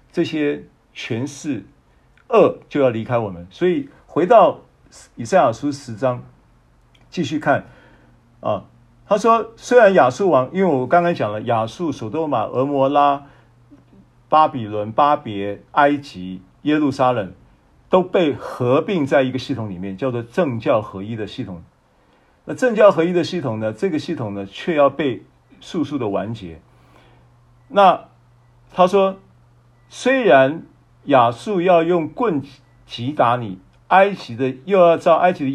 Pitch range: 105-150 Hz